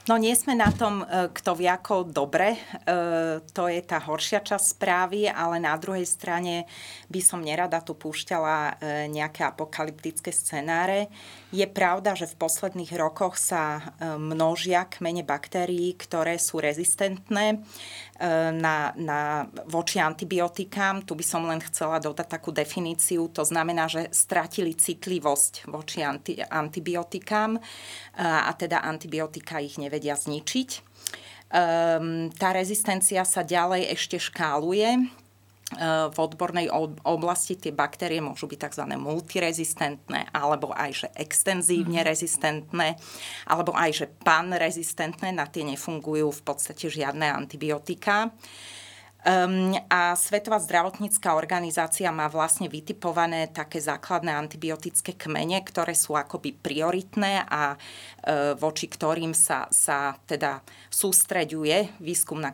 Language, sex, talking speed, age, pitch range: Slovak, female, 120 wpm, 30-49, 155-180 Hz